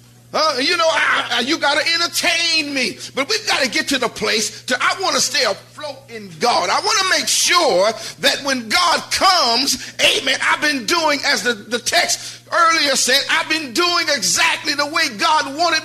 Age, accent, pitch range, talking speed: 50-69, American, 200-300 Hz, 195 wpm